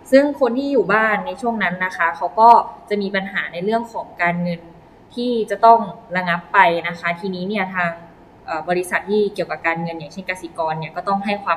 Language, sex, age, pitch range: Thai, female, 20-39, 175-225 Hz